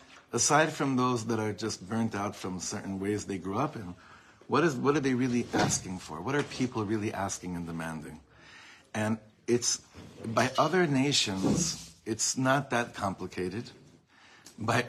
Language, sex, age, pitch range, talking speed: English, male, 60-79, 100-125 Hz, 160 wpm